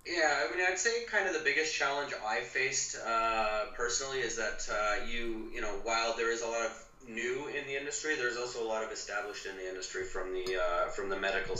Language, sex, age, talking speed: English, male, 30-49, 235 wpm